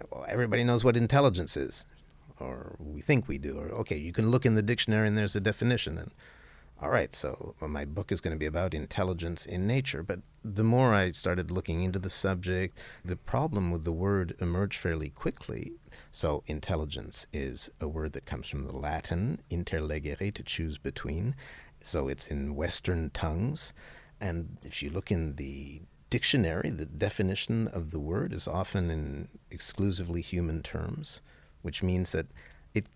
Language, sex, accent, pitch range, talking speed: English, male, American, 75-105 Hz, 175 wpm